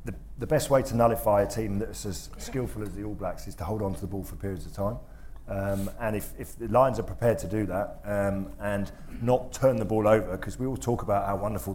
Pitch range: 100-115 Hz